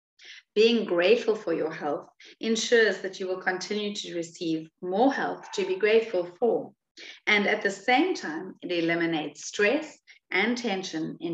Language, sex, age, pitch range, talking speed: English, female, 40-59, 165-230 Hz, 155 wpm